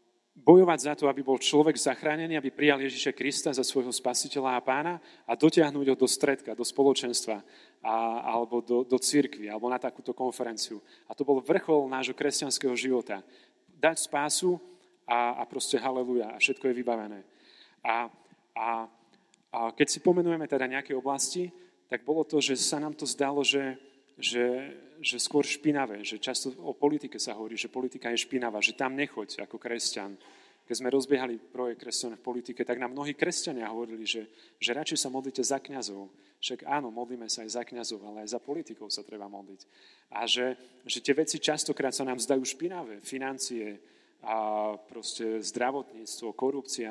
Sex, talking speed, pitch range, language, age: male, 170 wpm, 120-140 Hz, Czech, 30-49